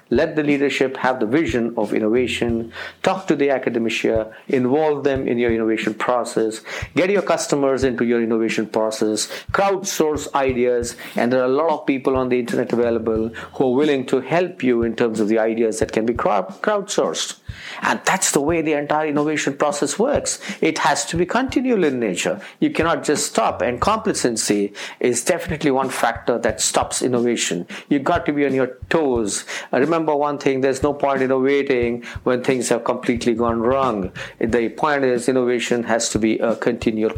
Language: English